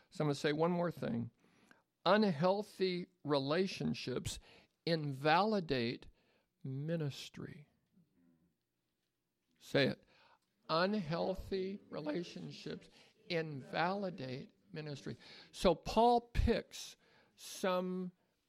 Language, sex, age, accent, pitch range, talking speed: English, male, 60-79, American, 140-190 Hz, 70 wpm